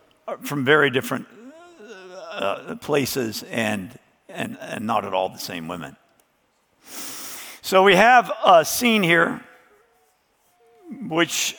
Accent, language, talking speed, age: American, English, 110 wpm, 50-69